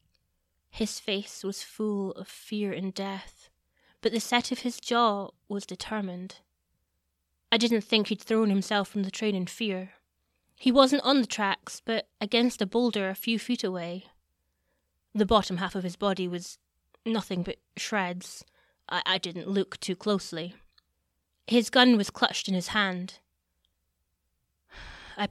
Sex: female